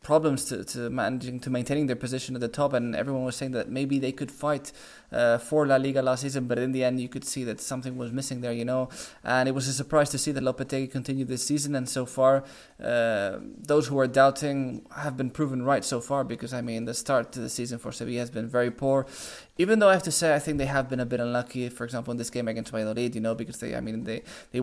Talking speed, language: 265 wpm, English